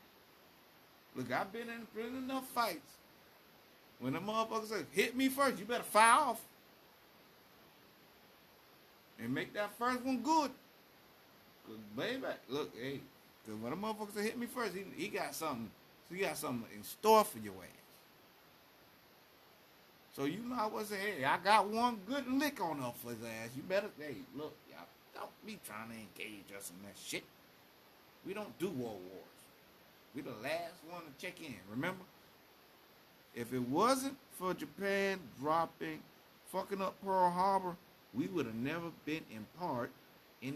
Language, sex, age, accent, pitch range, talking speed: English, male, 60-79, American, 140-225 Hz, 165 wpm